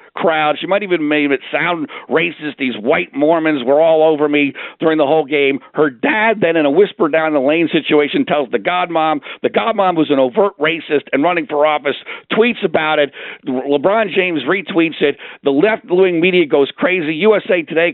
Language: English